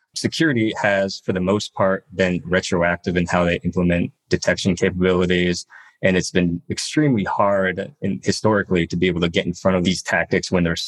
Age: 20-39